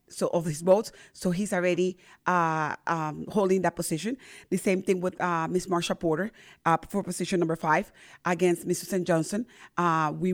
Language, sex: English, female